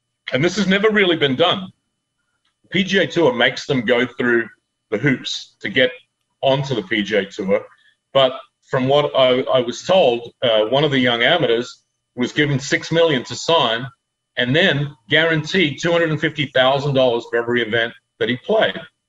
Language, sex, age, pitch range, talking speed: English, male, 40-59, 130-175 Hz, 175 wpm